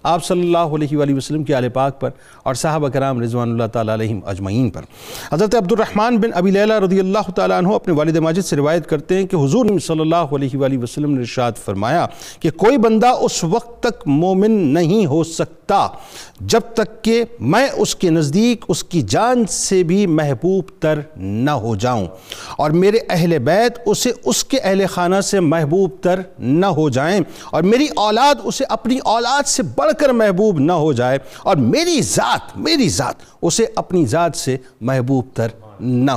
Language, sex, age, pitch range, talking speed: Urdu, male, 50-69, 145-220 Hz, 185 wpm